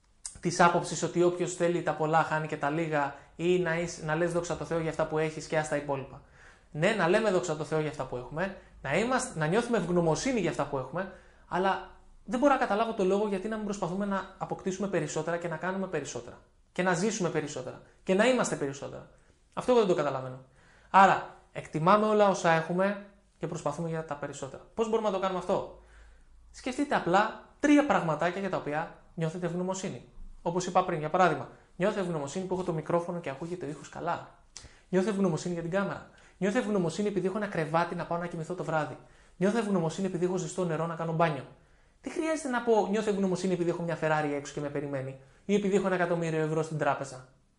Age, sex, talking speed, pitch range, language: 20-39, male, 205 wpm, 155-195 Hz, Greek